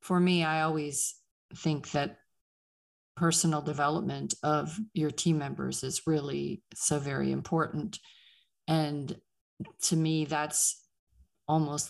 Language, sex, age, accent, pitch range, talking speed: English, female, 40-59, American, 150-165 Hz, 110 wpm